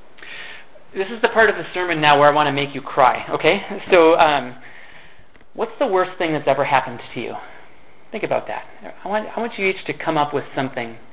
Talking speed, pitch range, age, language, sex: 215 wpm, 140-185 Hz, 30-49, English, male